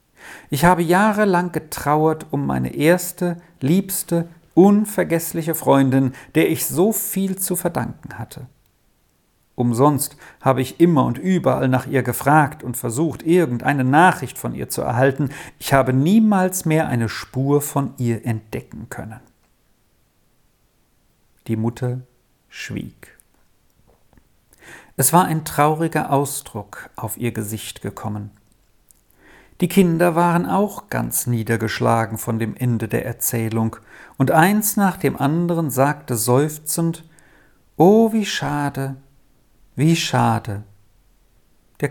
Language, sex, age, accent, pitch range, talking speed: German, male, 50-69, German, 125-180 Hz, 115 wpm